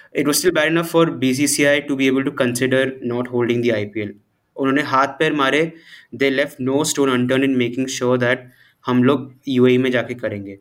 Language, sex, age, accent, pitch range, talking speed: Hindi, male, 20-39, native, 125-150 Hz, 185 wpm